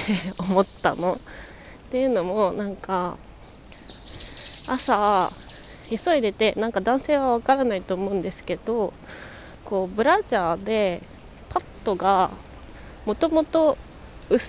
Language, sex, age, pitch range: Japanese, female, 20-39, 190-260 Hz